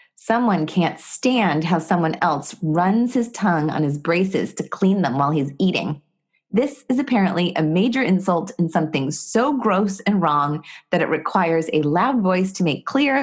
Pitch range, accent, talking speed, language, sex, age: 155-200 Hz, American, 175 wpm, English, female, 30-49